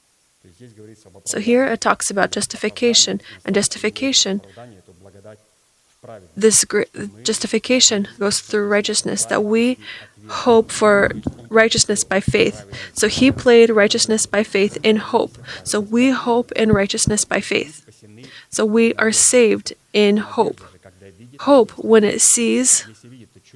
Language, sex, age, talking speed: English, female, 20-39, 115 wpm